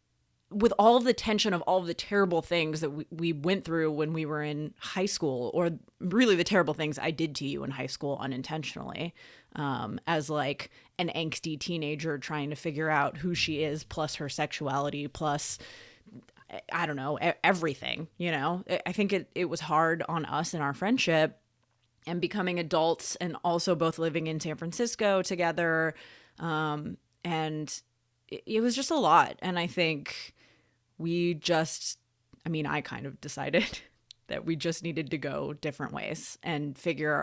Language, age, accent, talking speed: English, 20-39, American, 175 wpm